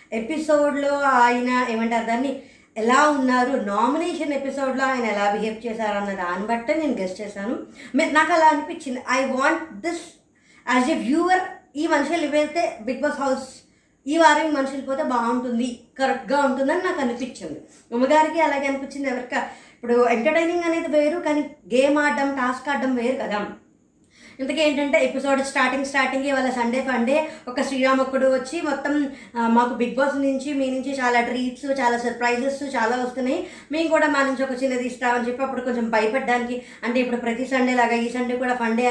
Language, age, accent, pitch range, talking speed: Telugu, 20-39, native, 245-285 Hz, 155 wpm